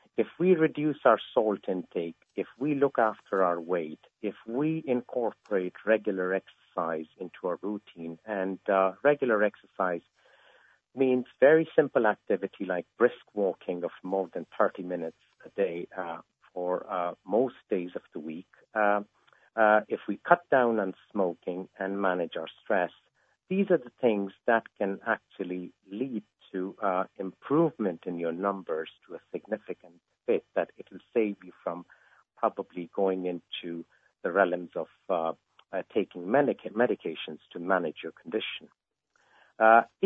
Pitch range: 90-120 Hz